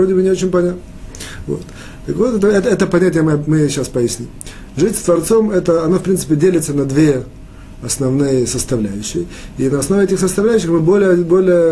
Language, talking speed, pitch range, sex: Russian, 180 wpm, 135-185 Hz, male